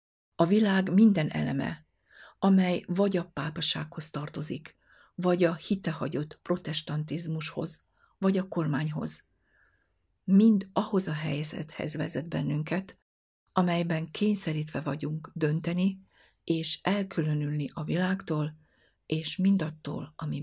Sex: female